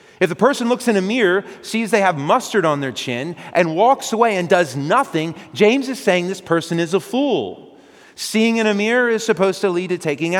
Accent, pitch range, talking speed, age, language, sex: American, 140-210 Hz, 220 wpm, 40-59, English, male